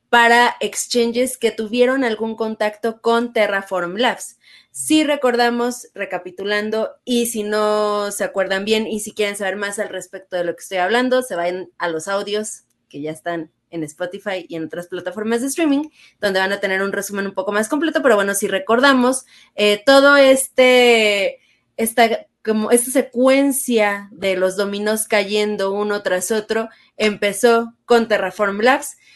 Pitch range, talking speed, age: 195-235 Hz, 160 wpm, 20-39